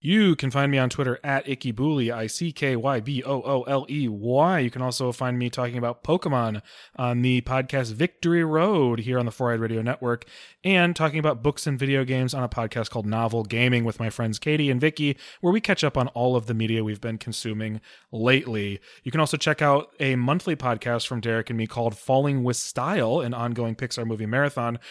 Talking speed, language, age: 195 wpm, English, 30-49